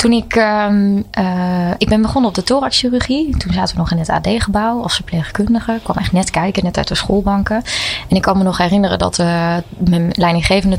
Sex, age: female, 20-39